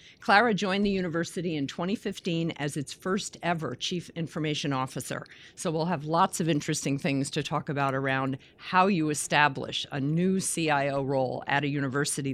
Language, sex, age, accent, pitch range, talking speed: English, female, 50-69, American, 145-185 Hz, 165 wpm